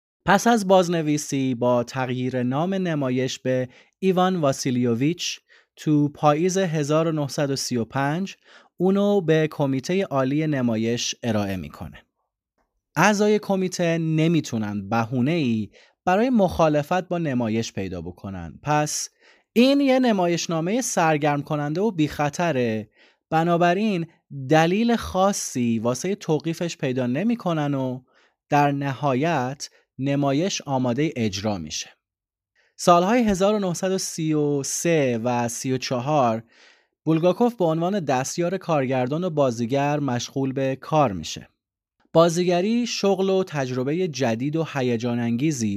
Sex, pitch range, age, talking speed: male, 125-180 Hz, 20-39, 100 wpm